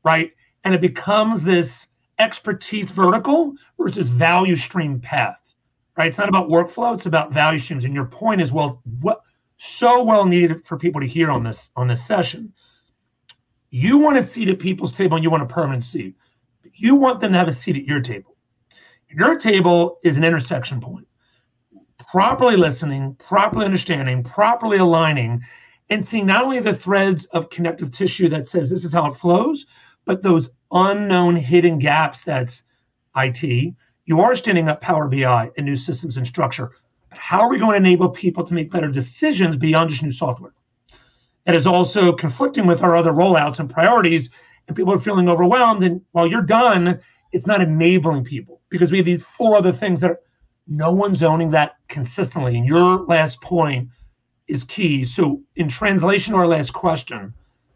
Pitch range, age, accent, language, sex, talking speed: 140-185 Hz, 40-59, American, English, male, 180 wpm